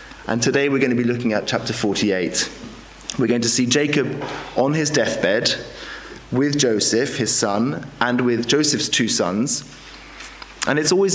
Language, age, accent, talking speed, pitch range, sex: English, 30-49, British, 160 wpm, 115-140 Hz, male